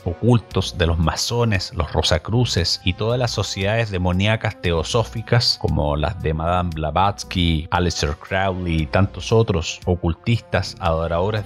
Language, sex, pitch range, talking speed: Spanish, male, 90-115 Hz, 125 wpm